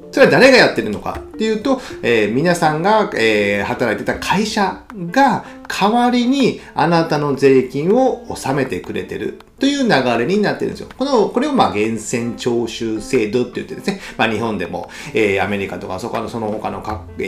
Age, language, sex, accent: 40-59, Japanese, male, native